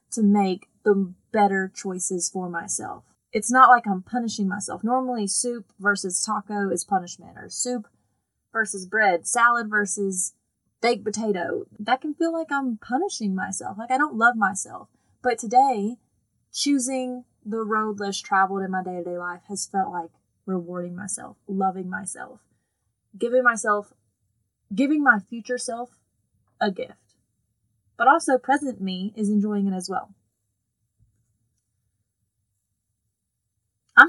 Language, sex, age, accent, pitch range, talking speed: English, female, 20-39, American, 185-245 Hz, 130 wpm